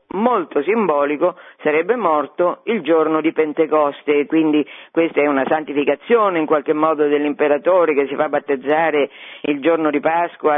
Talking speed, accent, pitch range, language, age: 140 wpm, native, 145-200 Hz, Italian, 50-69